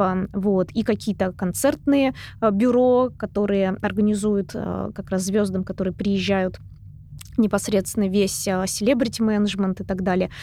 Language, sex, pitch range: Russian, female, 190-230 Hz